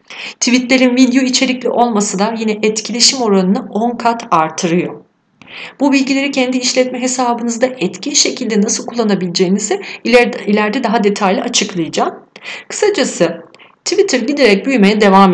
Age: 40-59